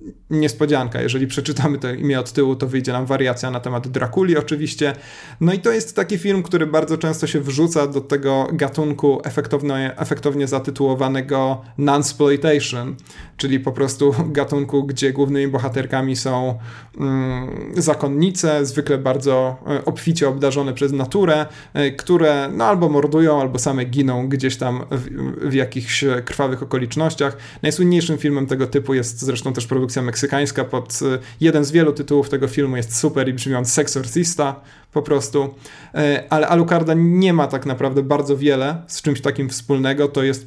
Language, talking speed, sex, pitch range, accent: Polish, 150 wpm, male, 130-150 Hz, native